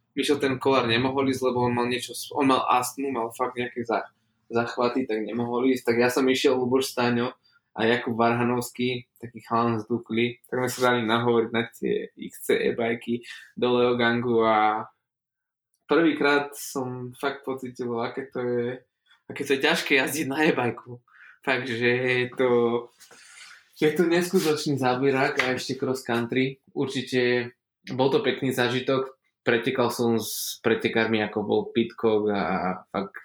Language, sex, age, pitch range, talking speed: Slovak, male, 20-39, 115-130 Hz, 145 wpm